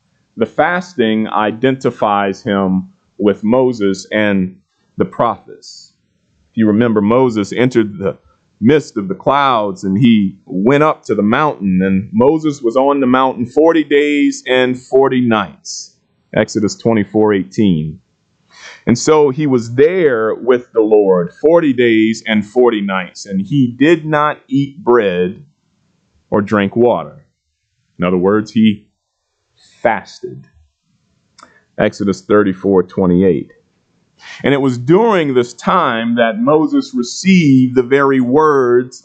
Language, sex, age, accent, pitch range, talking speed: English, male, 30-49, American, 105-140 Hz, 125 wpm